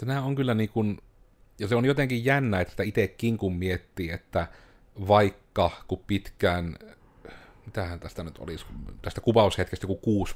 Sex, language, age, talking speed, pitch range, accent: male, Finnish, 30-49, 140 wpm, 90-105 Hz, native